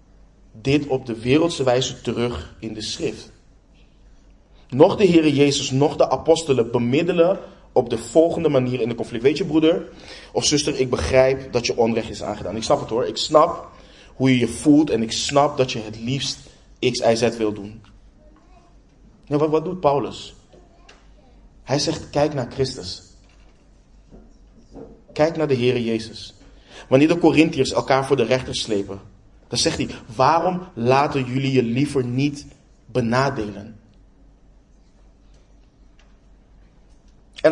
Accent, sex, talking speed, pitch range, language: Dutch, male, 145 wpm, 110-145 Hz, Dutch